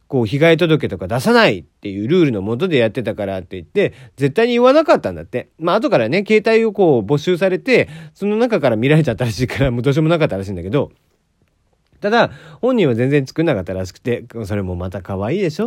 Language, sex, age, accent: Japanese, male, 40-59, native